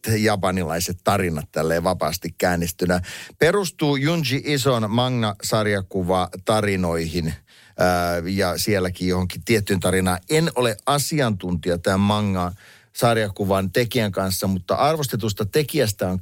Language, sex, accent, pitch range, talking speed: Finnish, male, native, 90-110 Hz, 95 wpm